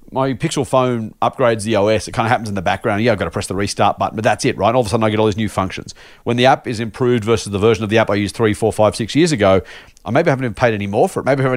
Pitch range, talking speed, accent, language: 105-135 Hz, 335 wpm, Australian, English